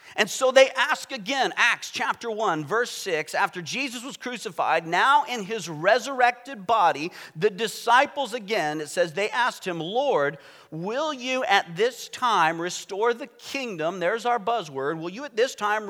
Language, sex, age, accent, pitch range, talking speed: English, male, 40-59, American, 150-235 Hz, 165 wpm